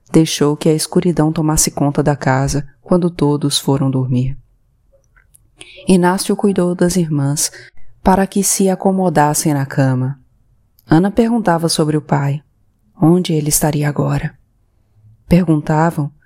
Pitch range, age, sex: 140-175 Hz, 20-39, female